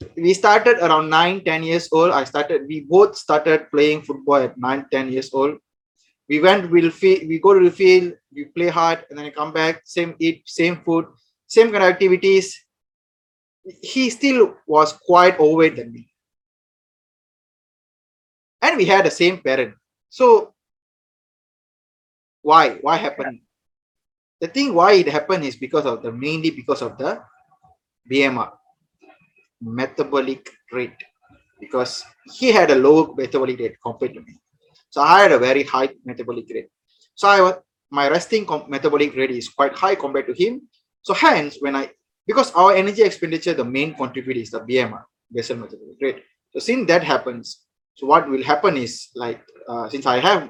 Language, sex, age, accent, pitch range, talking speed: English, male, 20-39, Indian, 135-195 Hz, 165 wpm